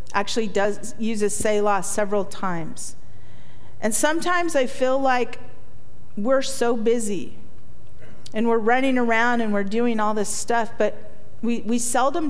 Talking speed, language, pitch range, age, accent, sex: 140 wpm, English, 195-260 Hz, 40-59, American, female